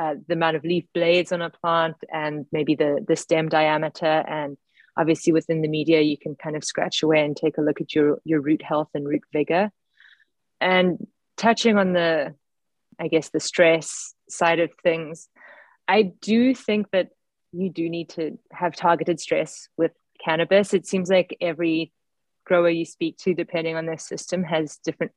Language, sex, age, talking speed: English, female, 20-39, 180 wpm